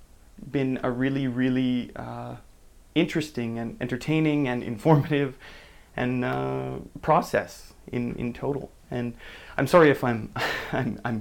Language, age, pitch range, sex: English, 20-39, 110-140 Hz, male